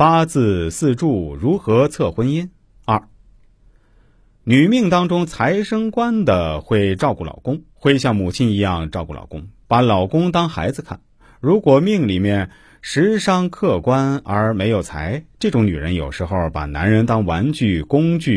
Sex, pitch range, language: male, 90-145 Hz, Chinese